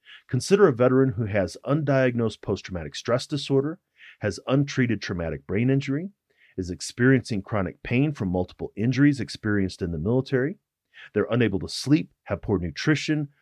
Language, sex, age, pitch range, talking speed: English, male, 40-59, 95-135 Hz, 145 wpm